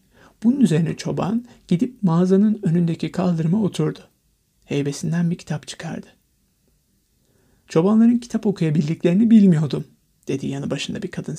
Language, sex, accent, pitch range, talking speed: Turkish, male, native, 155-195 Hz, 110 wpm